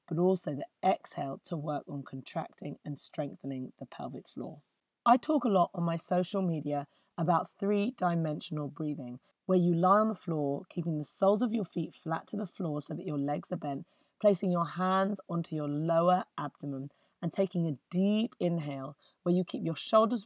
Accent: British